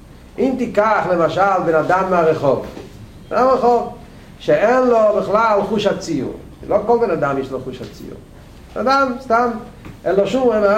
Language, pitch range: Hebrew, 170-225 Hz